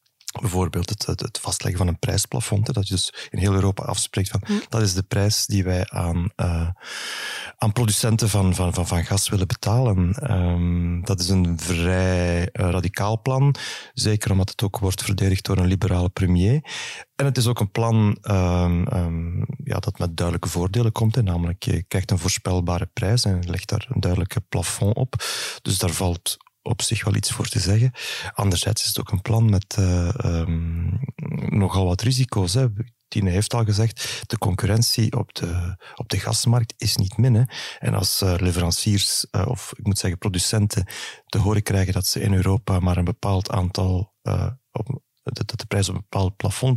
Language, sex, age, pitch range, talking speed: Dutch, male, 30-49, 95-115 Hz, 190 wpm